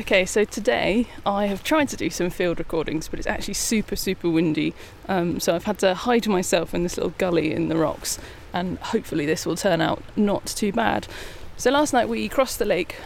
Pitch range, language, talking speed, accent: 170-220 Hz, English, 215 wpm, British